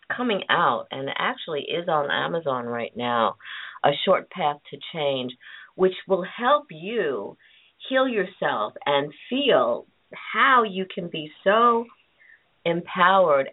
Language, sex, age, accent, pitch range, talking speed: English, female, 50-69, American, 145-190 Hz, 125 wpm